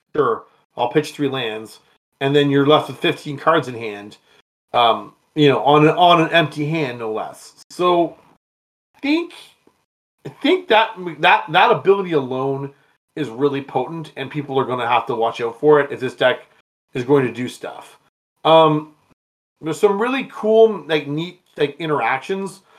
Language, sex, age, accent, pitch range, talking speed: English, male, 30-49, American, 140-175 Hz, 175 wpm